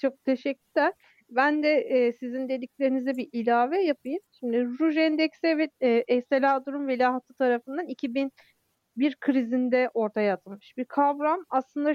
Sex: female